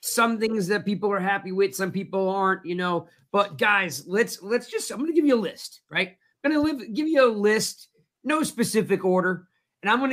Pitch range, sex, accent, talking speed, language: 170-220 Hz, male, American, 225 wpm, English